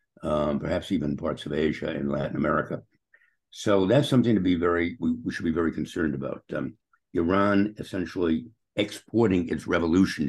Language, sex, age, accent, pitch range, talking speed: English, male, 60-79, American, 80-105 Hz, 165 wpm